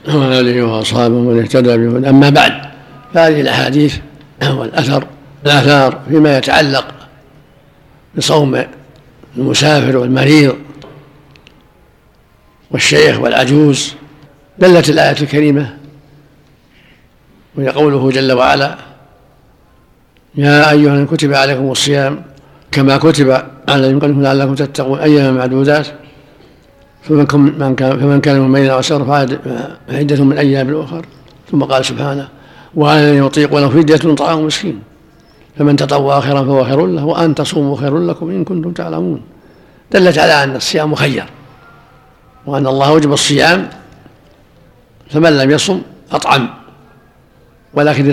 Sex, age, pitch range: male, 60-79, 135-150 Hz